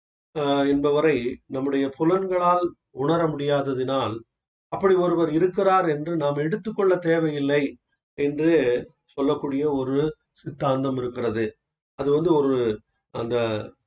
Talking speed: 90 wpm